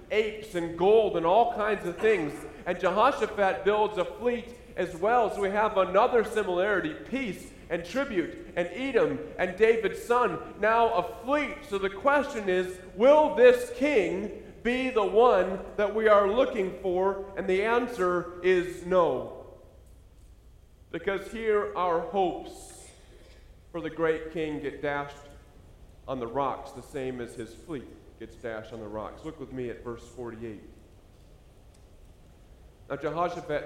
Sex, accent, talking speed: male, American, 145 wpm